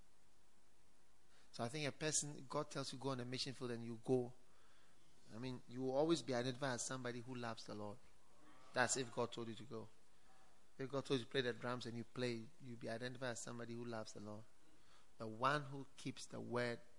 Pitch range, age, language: 120-165 Hz, 30-49, English